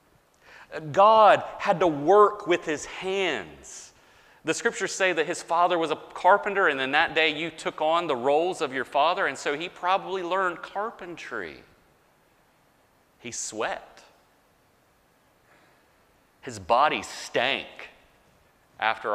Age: 40-59